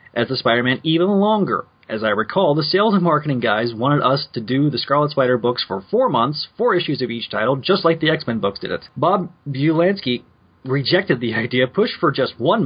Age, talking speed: 30-49, 215 wpm